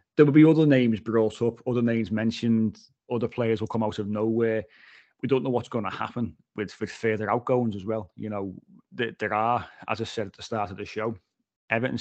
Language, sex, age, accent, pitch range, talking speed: English, male, 30-49, British, 100-115 Hz, 225 wpm